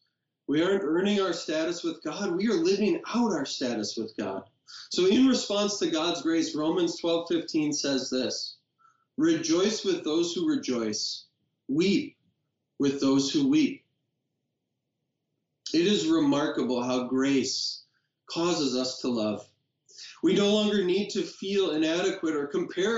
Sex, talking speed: male, 140 wpm